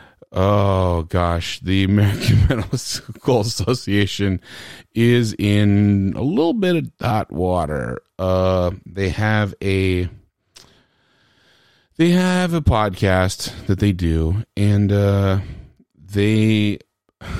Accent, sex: American, male